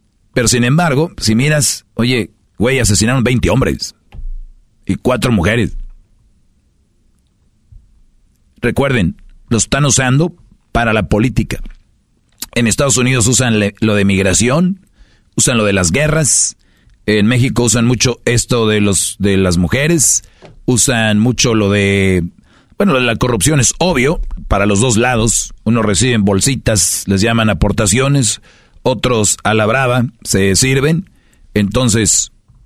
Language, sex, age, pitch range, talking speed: Spanish, male, 40-59, 105-125 Hz, 125 wpm